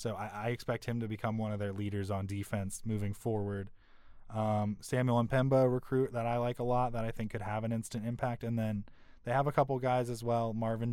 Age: 20-39